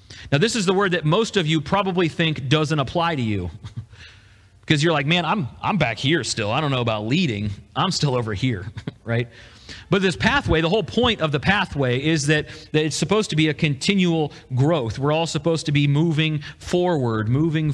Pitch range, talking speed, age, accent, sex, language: 115-155 Hz, 205 wpm, 40-59, American, male, English